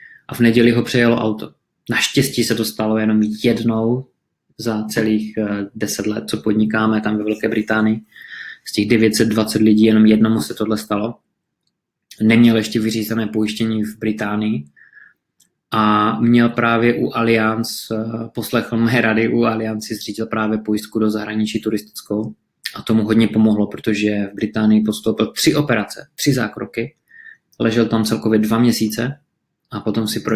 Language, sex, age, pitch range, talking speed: Czech, male, 20-39, 105-115 Hz, 145 wpm